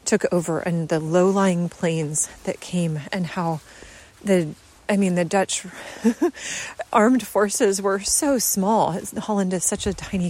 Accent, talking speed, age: American, 145 wpm, 30-49